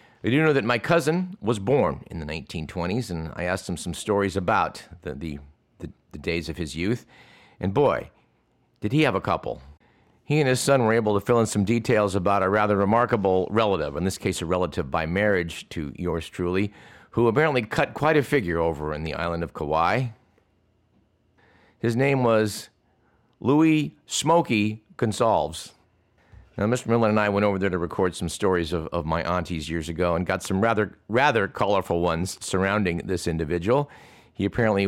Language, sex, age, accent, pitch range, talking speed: English, male, 50-69, American, 90-115 Hz, 185 wpm